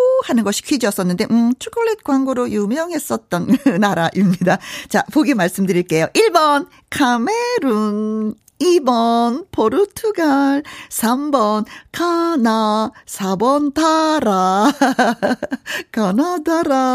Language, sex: Korean, female